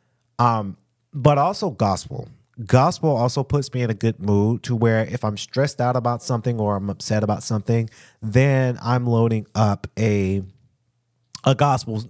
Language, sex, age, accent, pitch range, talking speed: English, male, 30-49, American, 105-130 Hz, 160 wpm